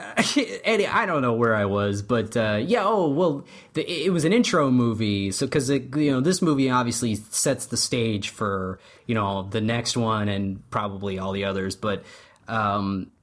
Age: 20-39